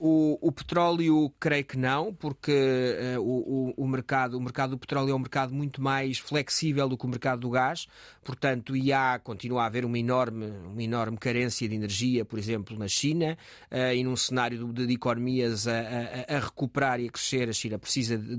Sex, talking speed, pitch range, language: male, 190 wpm, 125-145 Hz, Portuguese